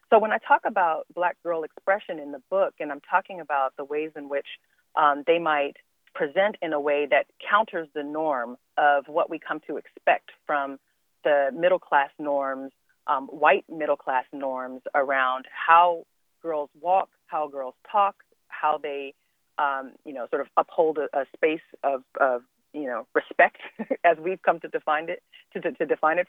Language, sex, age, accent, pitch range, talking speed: English, female, 30-49, American, 145-185 Hz, 180 wpm